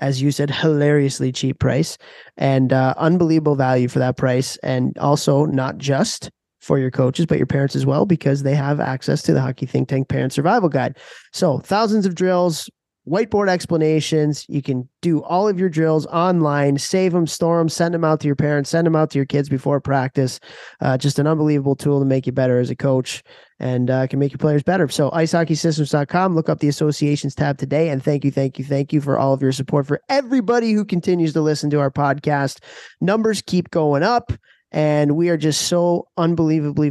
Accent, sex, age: American, male, 20-39